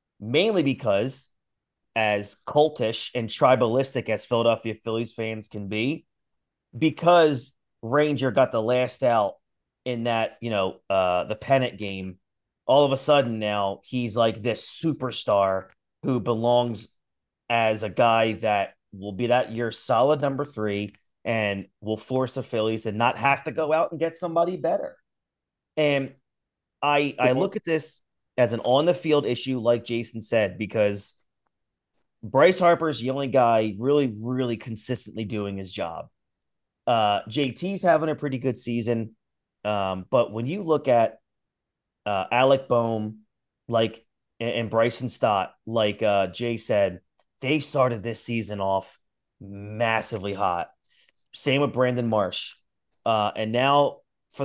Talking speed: 140 wpm